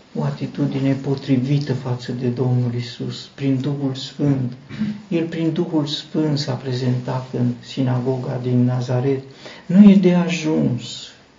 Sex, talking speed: male, 125 wpm